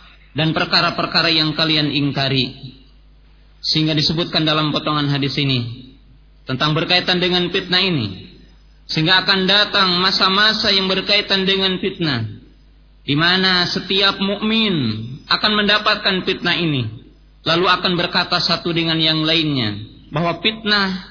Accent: Indonesian